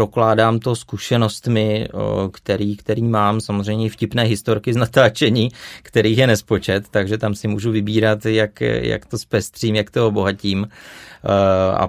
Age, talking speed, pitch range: 30-49, 135 wpm, 95-110 Hz